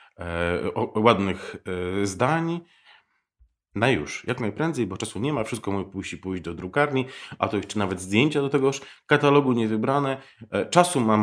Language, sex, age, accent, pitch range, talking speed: Polish, male, 40-59, native, 95-125 Hz, 175 wpm